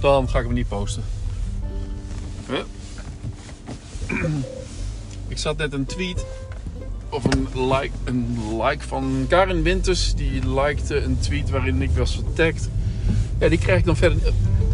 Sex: male